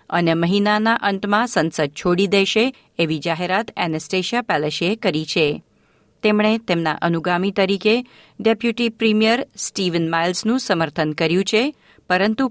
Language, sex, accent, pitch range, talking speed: Gujarati, female, native, 170-230 Hz, 115 wpm